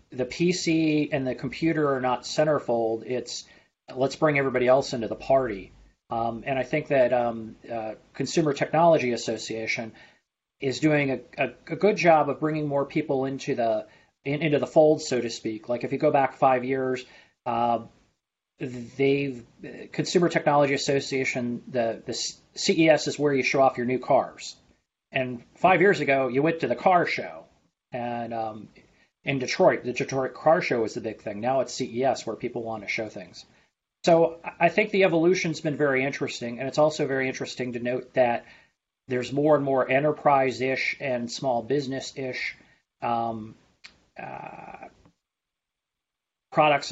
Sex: male